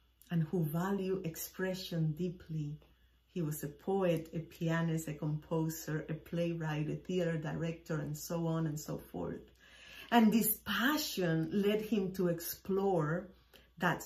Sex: female